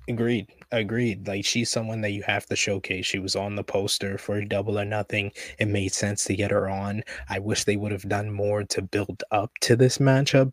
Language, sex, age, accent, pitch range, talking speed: English, male, 20-39, American, 100-115 Hz, 230 wpm